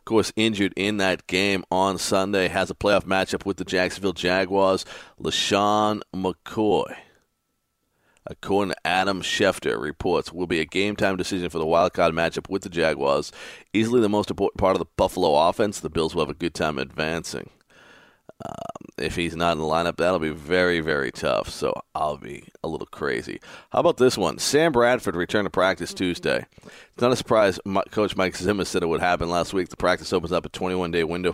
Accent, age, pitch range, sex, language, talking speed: American, 40-59, 90-105 Hz, male, English, 195 wpm